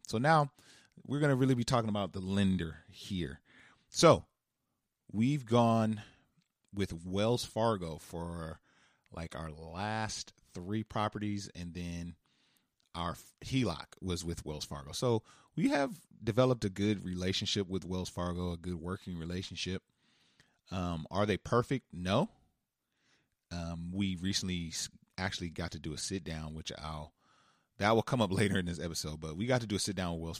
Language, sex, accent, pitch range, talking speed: English, male, American, 80-105 Hz, 160 wpm